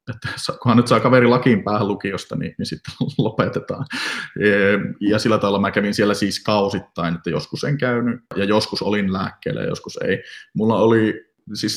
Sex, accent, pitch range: male, native, 95-125 Hz